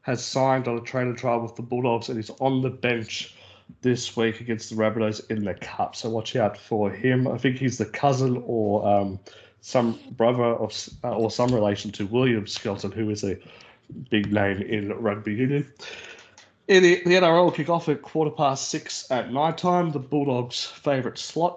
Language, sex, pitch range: English, male, 110-135 Hz